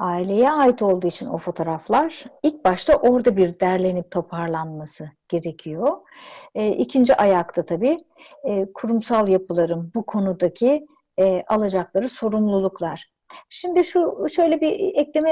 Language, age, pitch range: Turkish, 60-79, 190-290 Hz